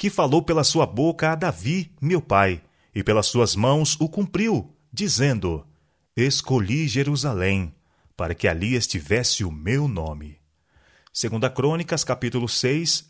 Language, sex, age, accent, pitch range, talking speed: Portuguese, male, 30-49, Brazilian, 110-150 Hz, 135 wpm